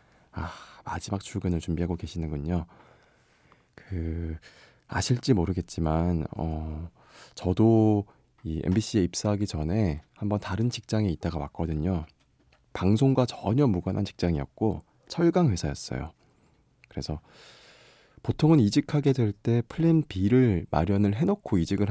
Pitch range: 85-115 Hz